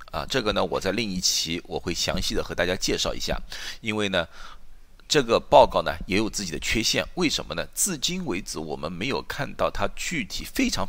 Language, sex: Chinese, male